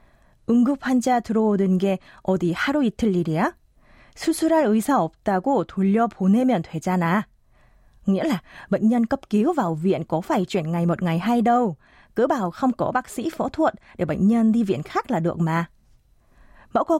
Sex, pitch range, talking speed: female, 170-235 Hz, 150 wpm